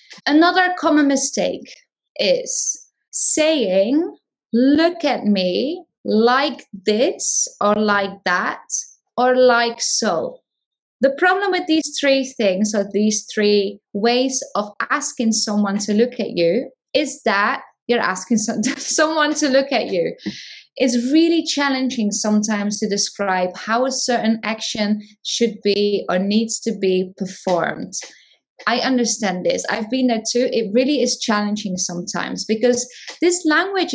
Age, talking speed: 20-39, 130 wpm